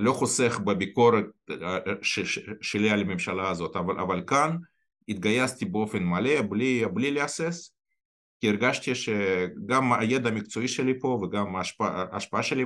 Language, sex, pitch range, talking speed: Hebrew, male, 95-130 Hz, 125 wpm